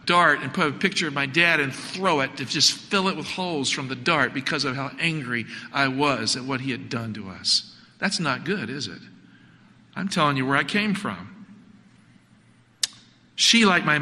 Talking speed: 205 wpm